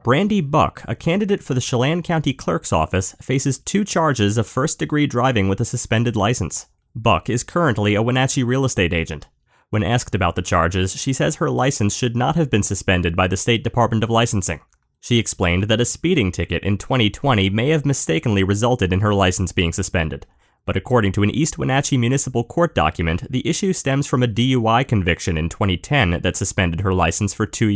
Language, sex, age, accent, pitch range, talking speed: English, male, 30-49, American, 95-125 Hz, 190 wpm